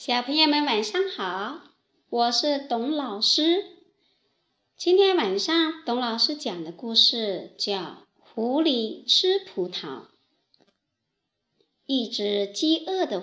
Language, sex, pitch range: Chinese, male, 225-365 Hz